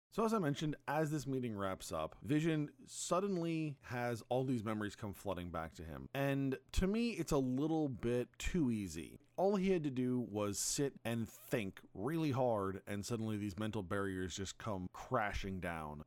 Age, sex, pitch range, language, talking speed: 30-49, male, 95-135 Hz, English, 185 wpm